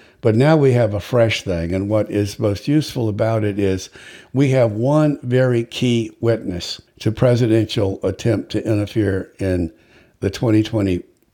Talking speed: 155 wpm